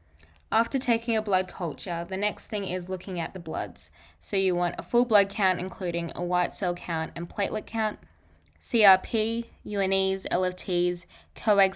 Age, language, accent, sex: 10-29, English, Australian, female